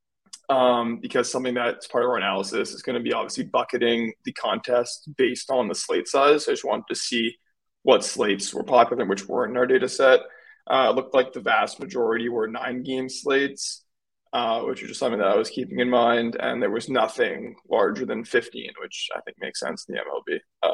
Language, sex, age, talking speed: English, male, 20-39, 220 wpm